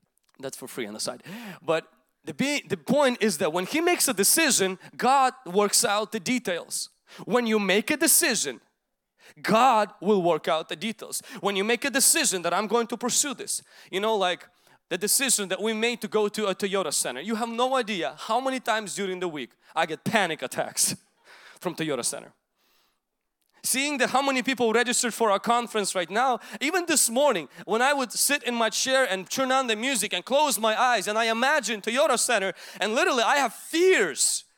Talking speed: 200 wpm